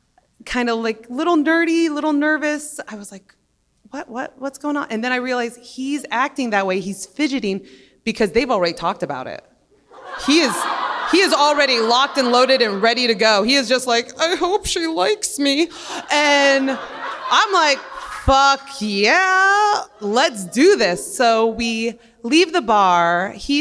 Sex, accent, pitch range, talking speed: female, American, 190-265 Hz, 170 wpm